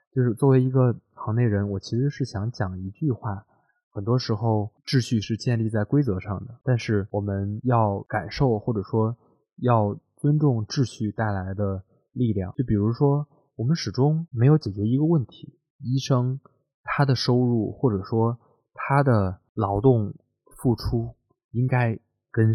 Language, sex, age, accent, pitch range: Chinese, male, 20-39, native, 105-130 Hz